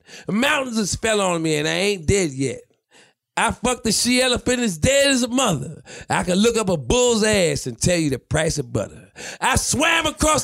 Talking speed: 220 wpm